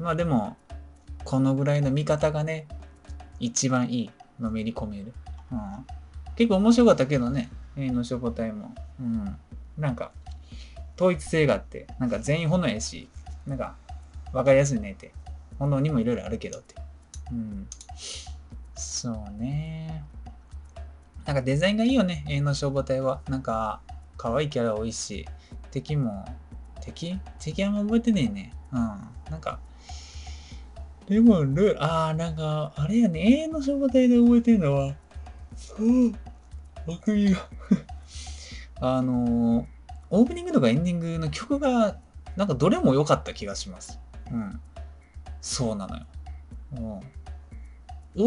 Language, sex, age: Japanese, male, 20-39